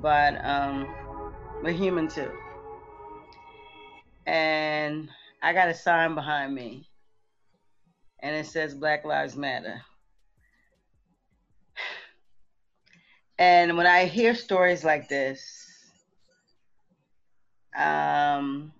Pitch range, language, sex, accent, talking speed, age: 145-180 Hz, English, female, American, 85 wpm, 30-49